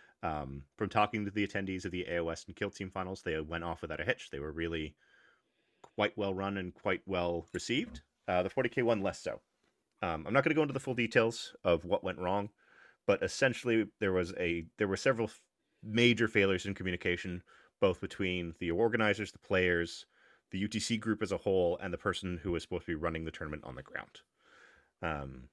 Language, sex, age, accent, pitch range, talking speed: English, male, 30-49, American, 85-105 Hz, 210 wpm